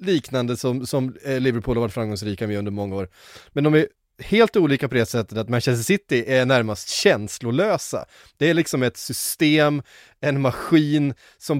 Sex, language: male, Swedish